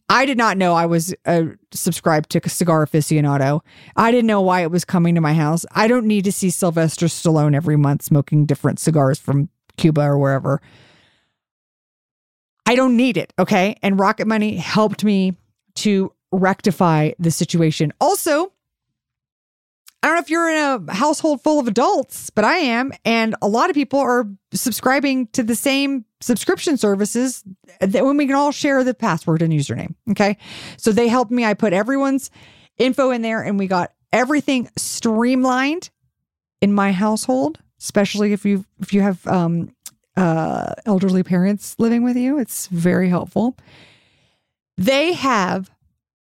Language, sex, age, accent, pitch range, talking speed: English, female, 40-59, American, 170-260 Hz, 160 wpm